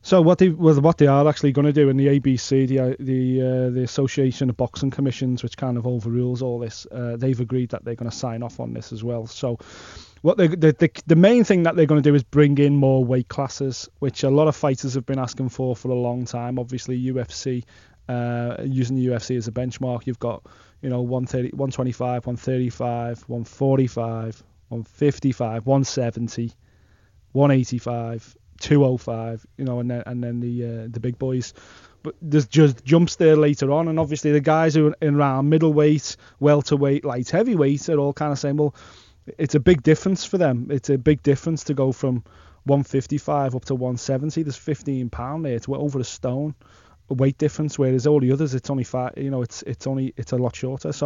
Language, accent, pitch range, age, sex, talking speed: English, British, 120-145 Hz, 20-39, male, 205 wpm